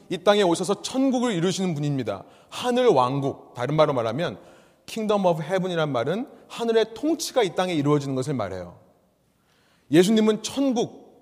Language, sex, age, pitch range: Korean, male, 30-49, 130-205 Hz